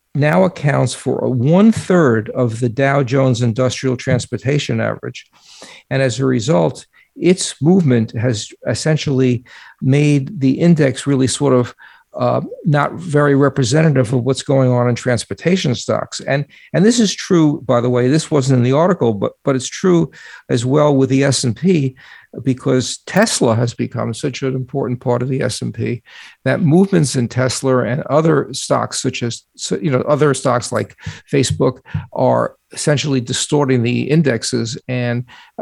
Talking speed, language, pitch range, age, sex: 150 wpm, English, 125-145 Hz, 50-69, male